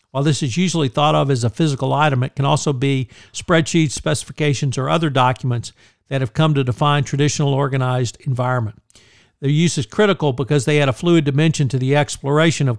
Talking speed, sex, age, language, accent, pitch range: 190 wpm, male, 50-69, English, American, 125-150 Hz